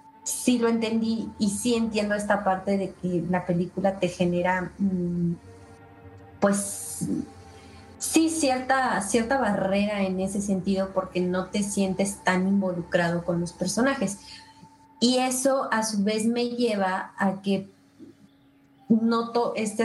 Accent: Mexican